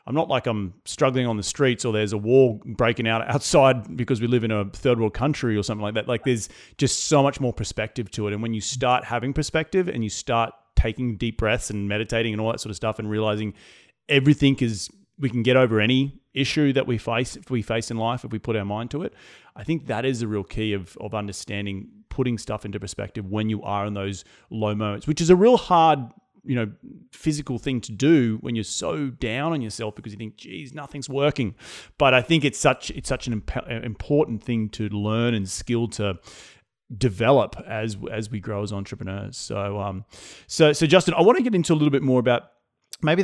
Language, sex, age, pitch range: English, male, 30-49, 105-130 Hz